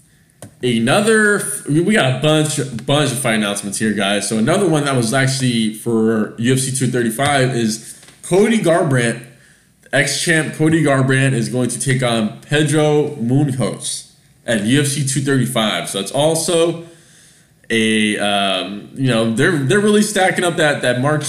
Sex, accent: male, American